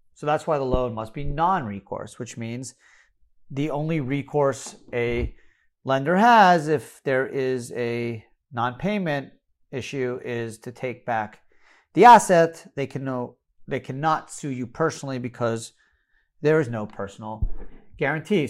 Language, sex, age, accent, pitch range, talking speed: English, male, 40-59, American, 130-180 Hz, 135 wpm